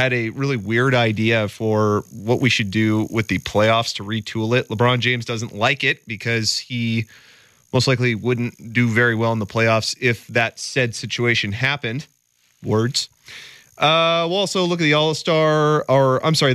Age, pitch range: 30-49, 110-135 Hz